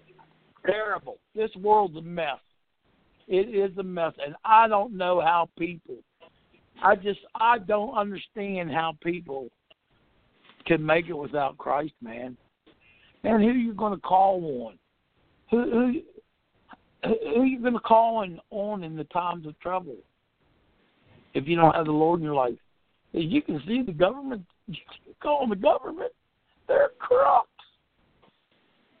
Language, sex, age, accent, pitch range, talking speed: English, male, 60-79, American, 195-285 Hz, 145 wpm